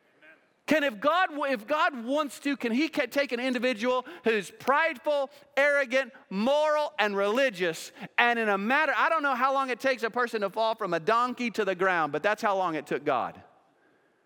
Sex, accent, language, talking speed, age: male, American, English, 195 wpm, 40-59